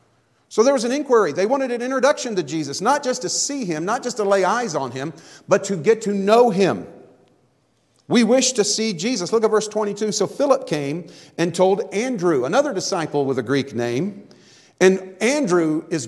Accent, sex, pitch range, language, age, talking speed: American, male, 160-220 Hz, English, 40-59, 200 wpm